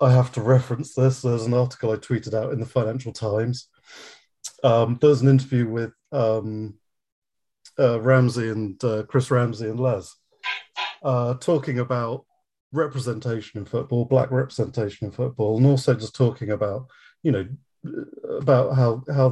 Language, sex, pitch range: English, male, 110-130 Hz